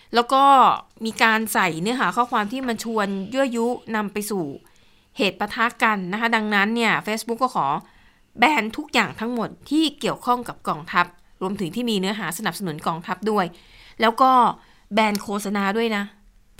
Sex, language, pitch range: female, Thai, 195-240 Hz